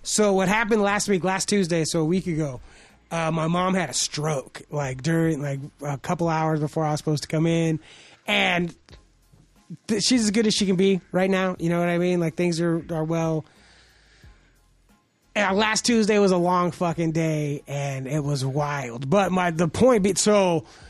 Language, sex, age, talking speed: English, male, 20-39, 195 wpm